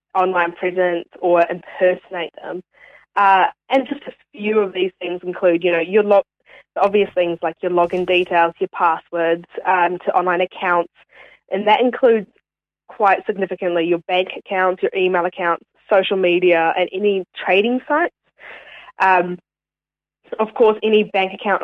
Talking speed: 150 wpm